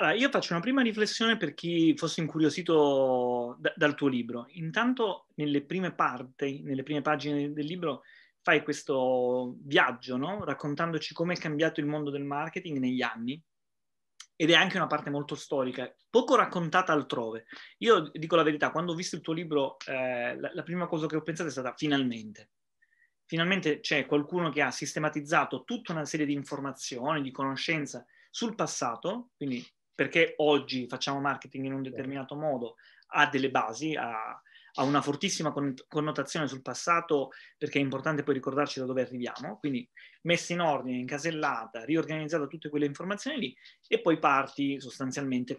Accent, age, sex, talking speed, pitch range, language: native, 30-49, male, 160 wpm, 135-165 Hz, Italian